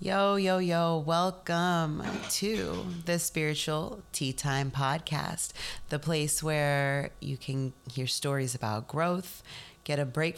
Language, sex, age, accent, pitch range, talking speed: English, female, 30-49, American, 140-170 Hz, 125 wpm